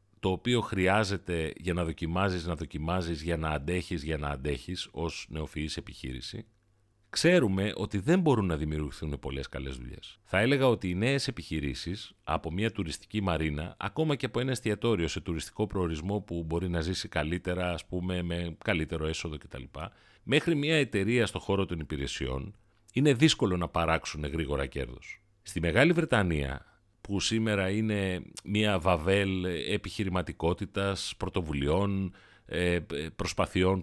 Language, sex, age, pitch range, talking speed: Greek, male, 40-59, 85-110 Hz, 140 wpm